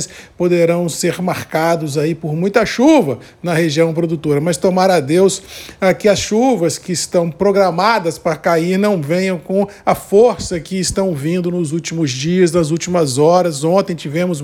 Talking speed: 155 wpm